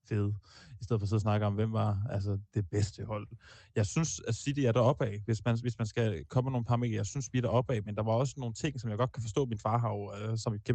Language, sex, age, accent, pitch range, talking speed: Danish, male, 20-39, native, 110-125 Hz, 305 wpm